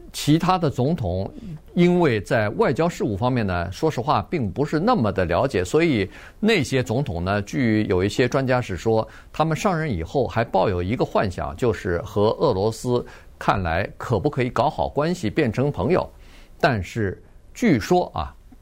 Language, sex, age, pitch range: Chinese, male, 50-69, 105-155 Hz